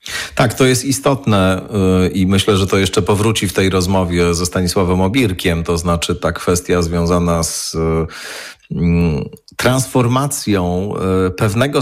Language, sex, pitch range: Polish, male, 95-115 Hz